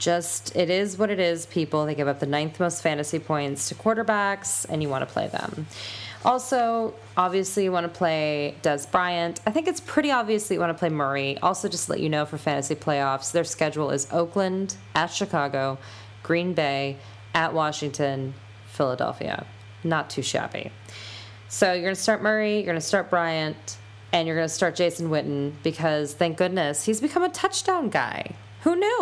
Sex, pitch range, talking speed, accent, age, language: female, 140-220 Hz, 190 wpm, American, 20-39, English